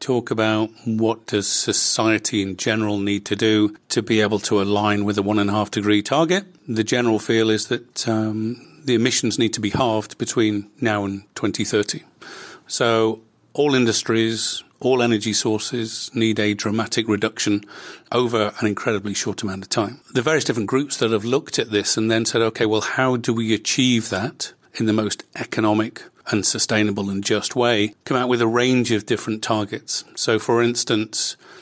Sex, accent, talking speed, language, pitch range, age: male, British, 180 wpm, English, 105-120 Hz, 40-59